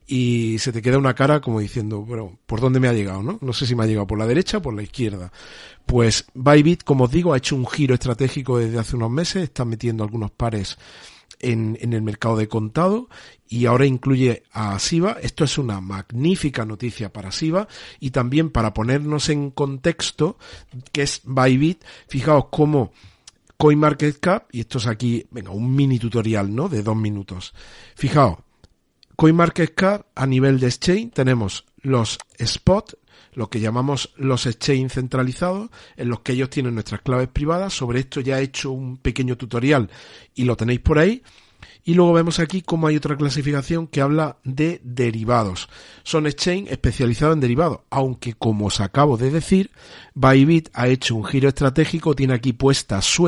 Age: 50-69